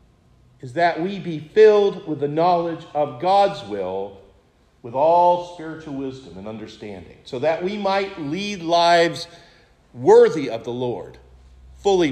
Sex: male